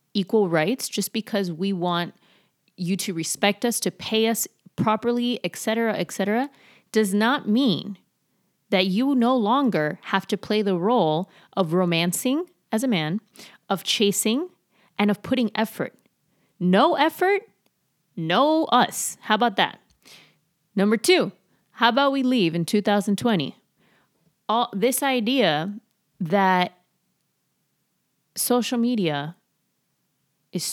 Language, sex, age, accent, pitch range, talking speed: English, female, 30-49, American, 175-230 Hz, 125 wpm